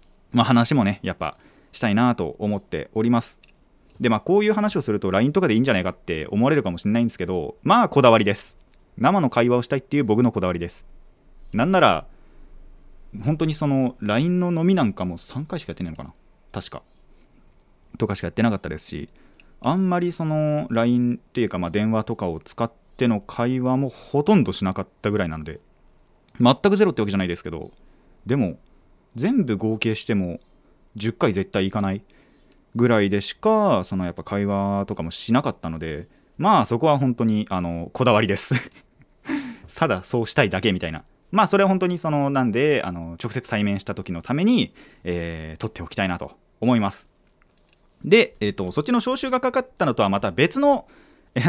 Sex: male